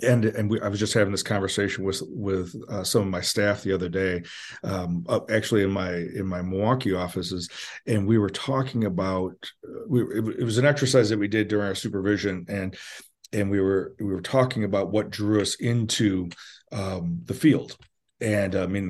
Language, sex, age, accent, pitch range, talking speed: English, male, 40-59, American, 95-115 Hz, 195 wpm